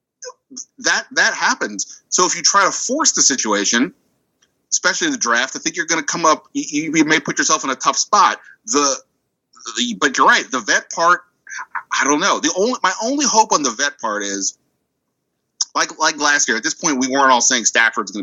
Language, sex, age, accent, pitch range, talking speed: English, male, 30-49, American, 115-165 Hz, 215 wpm